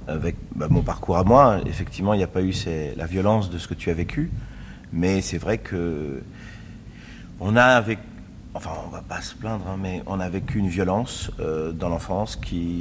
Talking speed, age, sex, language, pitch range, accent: 205 wpm, 40-59, male, French, 90-110 Hz, French